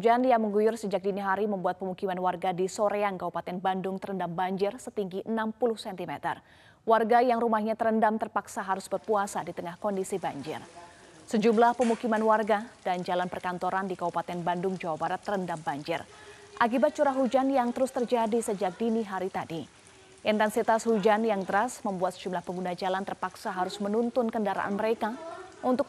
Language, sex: Indonesian, female